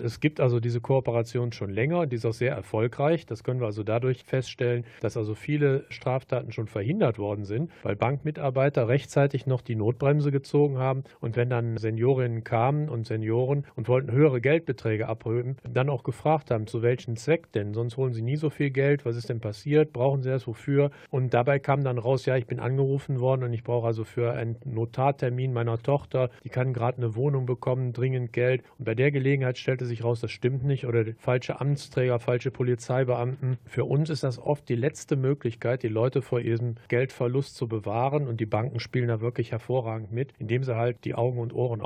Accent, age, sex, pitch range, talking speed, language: German, 40-59, male, 120-140 Hz, 205 wpm, German